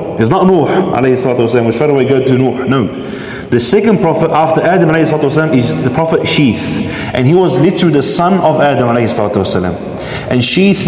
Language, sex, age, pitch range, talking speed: English, male, 30-49, 125-175 Hz, 205 wpm